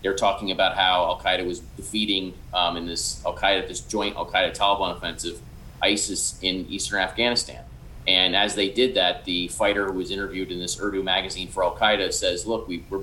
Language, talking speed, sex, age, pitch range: English, 170 wpm, male, 30-49, 95-110 Hz